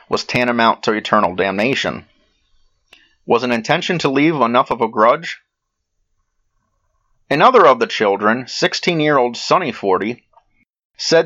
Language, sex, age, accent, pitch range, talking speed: English, male, 30-49, American, 110-155 Hz, 115 wpm